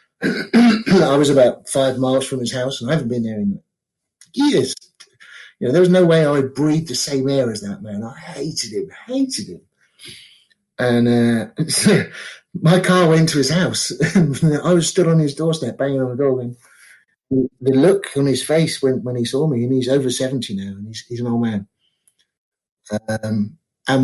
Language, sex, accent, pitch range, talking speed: English, male, British, 115-155 Hz, 190 wpm